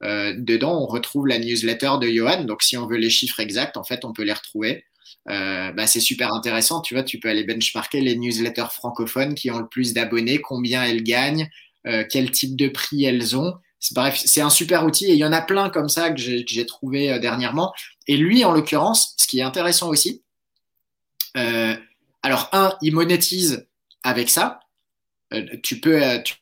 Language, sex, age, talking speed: French, male, 20-39, 205 wpm